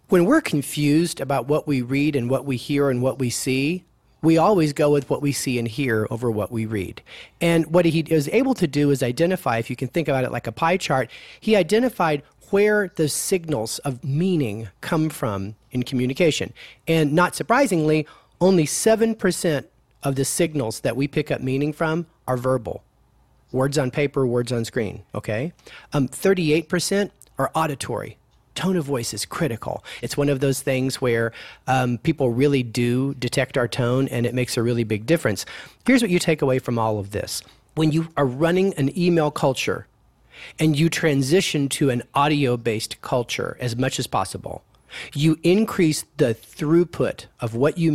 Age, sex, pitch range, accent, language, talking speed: 40-59, male, 125-165 Hz, American, English, 180 wpm